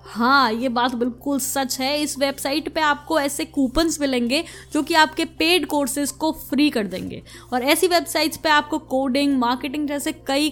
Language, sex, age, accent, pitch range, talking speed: Hindi, female, 20-39, native, 250-305 Hz, 175 wpm